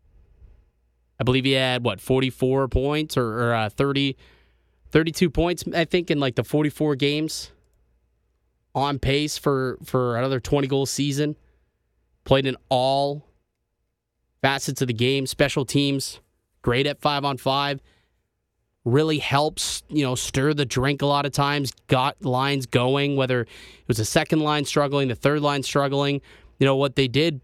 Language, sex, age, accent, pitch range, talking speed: English, male, 20-39, American, 115-145 Hz, 155 wpm